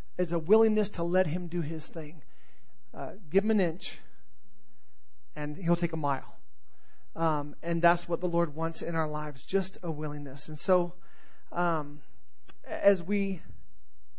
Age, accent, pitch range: 40-59, American, 150-180 Hz